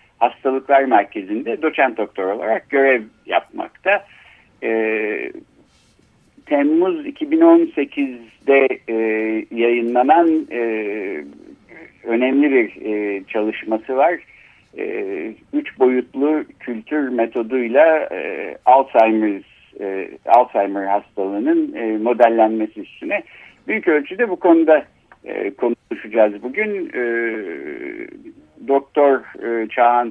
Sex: male